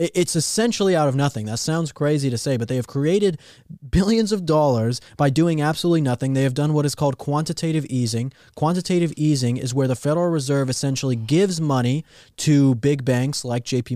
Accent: American